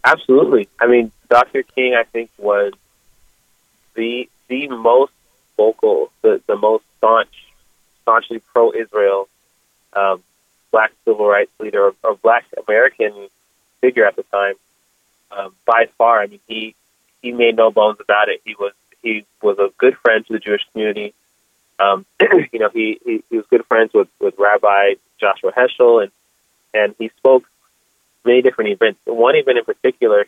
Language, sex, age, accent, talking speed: English, male, 30-49, American, 155 wpm